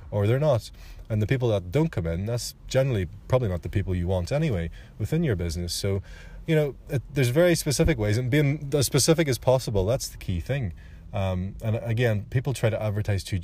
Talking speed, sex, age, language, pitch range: 210 wpm, male, 30-49, English, 90-110 Hz